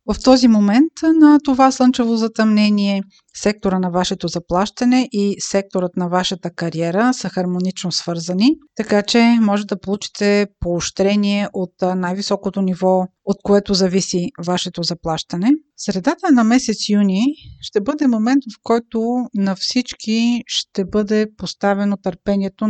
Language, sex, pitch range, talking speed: Bulgarian, female, 185-230 Hz, 125 wpm